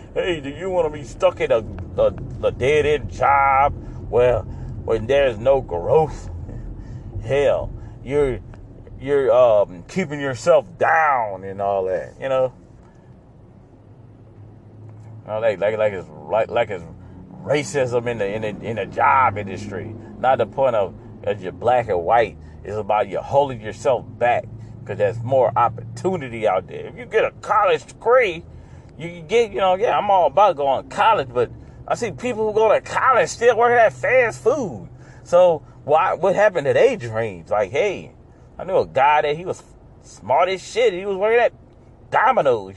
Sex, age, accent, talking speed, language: male, 40-59, American, 170 wpm, English